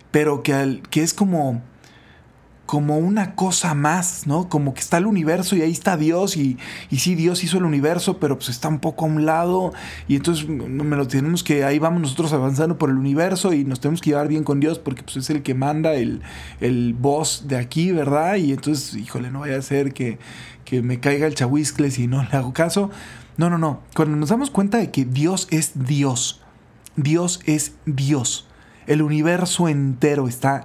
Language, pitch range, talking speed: Spanish, 135-170 Hz, 205 wpm